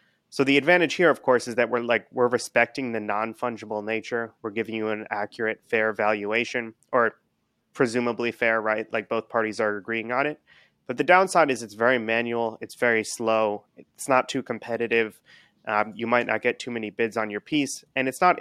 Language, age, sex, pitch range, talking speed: English, 30-49, male, 110-130 Hz, 200 wpm